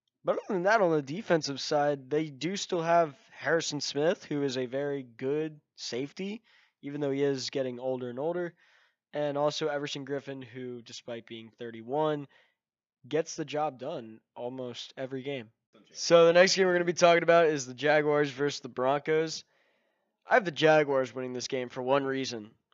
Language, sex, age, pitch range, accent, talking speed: English, male, 20-39, 135-165 Hz, American, 180 wpm